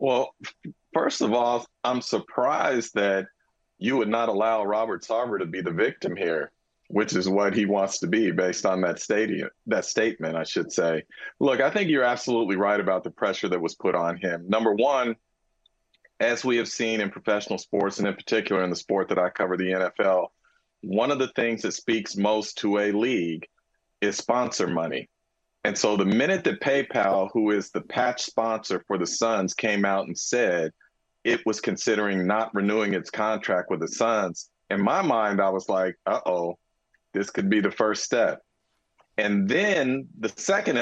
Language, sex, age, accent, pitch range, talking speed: English, male, 40-59, American, 100-115 Hz, 185 wpm